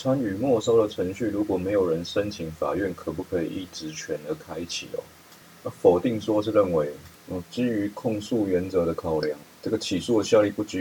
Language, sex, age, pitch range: Chinese, male, 30-49, 85-100 Hz